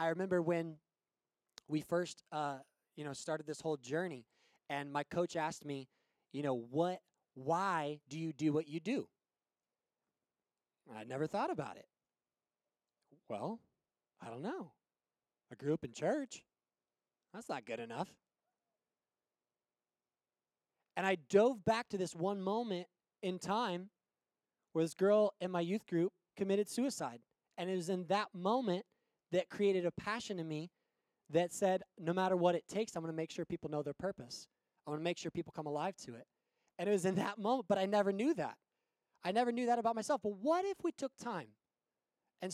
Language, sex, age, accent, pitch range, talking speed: English, male, 20-39, American, 145-195 Hz, 180 wpm